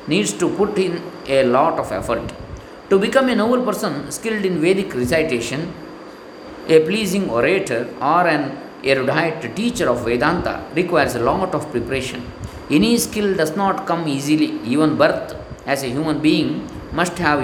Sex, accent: male, native